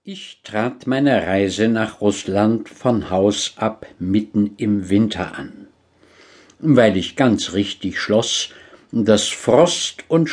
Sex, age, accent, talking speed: male, 60-79, German, 120 wpm